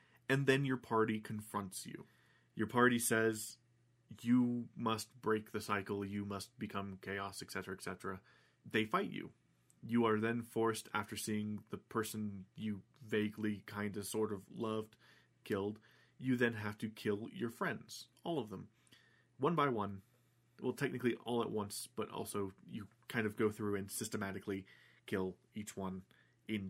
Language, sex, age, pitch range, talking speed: English, male, 30-49, 105-120 Hz, 155 wpm